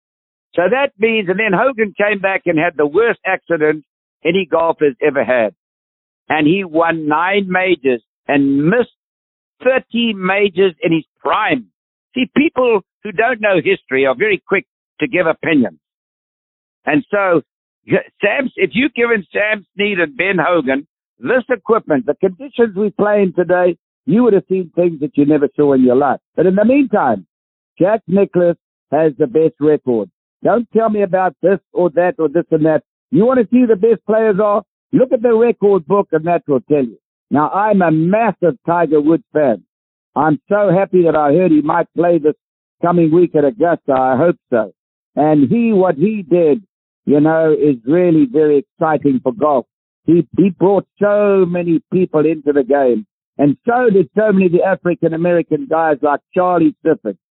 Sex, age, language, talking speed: male, 60-79, English, 175 wpm